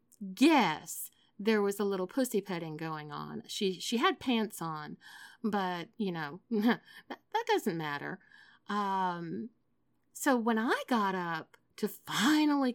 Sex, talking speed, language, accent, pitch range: female, 135 wpm, English, American, 180-230 Hz